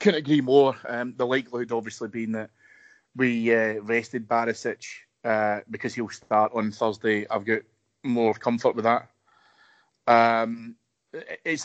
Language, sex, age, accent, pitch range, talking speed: English, male, 30-49, British, 110-130 Hz, 140 wpm